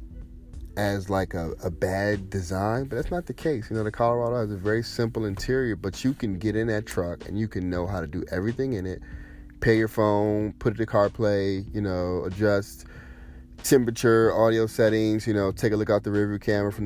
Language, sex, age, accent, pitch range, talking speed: English, male, 30-49, American, 90-115 Hz, 215 wpm